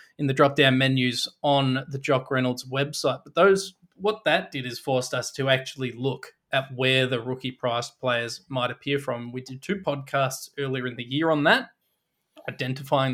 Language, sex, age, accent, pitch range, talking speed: English, male, 20-39, Australian, 125-145 Hz, 185 wpm